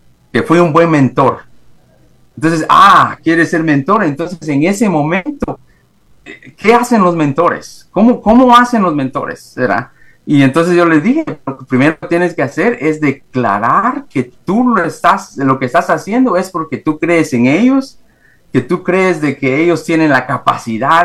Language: Spanish